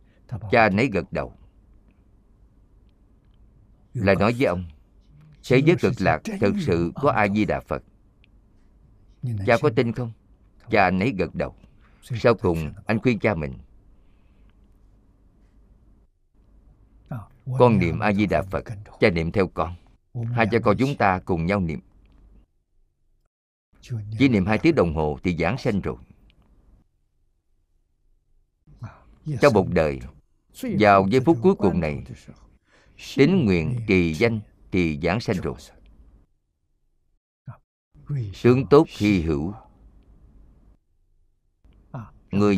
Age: 50-69